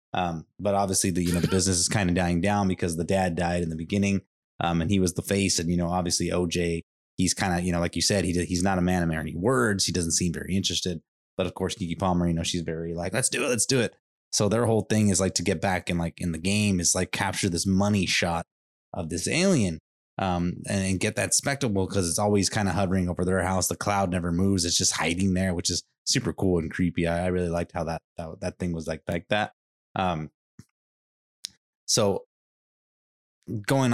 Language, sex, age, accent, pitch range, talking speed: English, male, 20-39, American, 85-100 Hz, 240 wpm